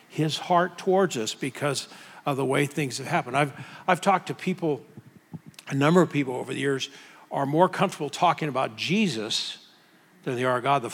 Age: 50-69